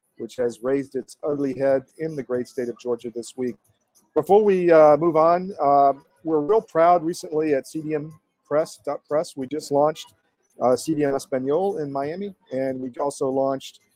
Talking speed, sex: 165 wpm, male